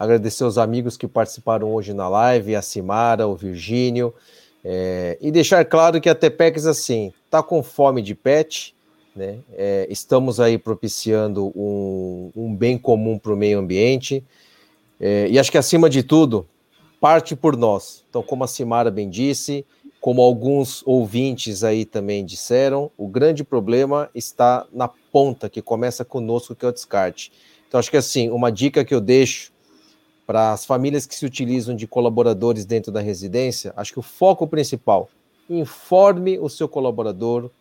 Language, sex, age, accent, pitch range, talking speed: Portuguese, male, 40-59, Brazilian, 110-145 Hz, 165 wpm